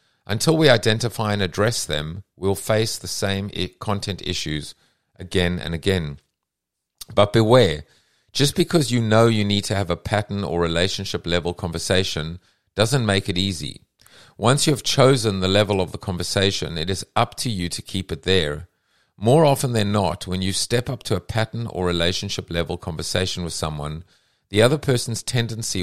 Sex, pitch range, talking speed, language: male, 90-110 Hz, 170 wpm, English